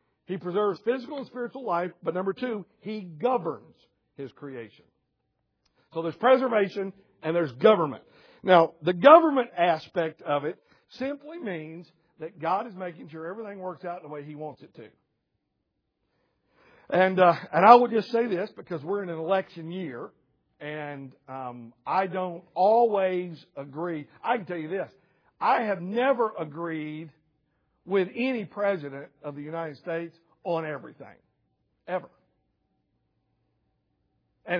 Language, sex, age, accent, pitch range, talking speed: English, male, 60-79, American, 155-210 Hz, 140 wpm